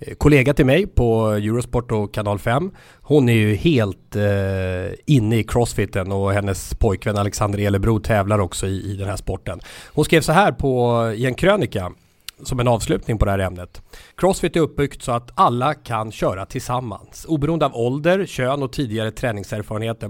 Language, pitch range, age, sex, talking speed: English, 110-140 Hz, 30-49, male, 175 wpm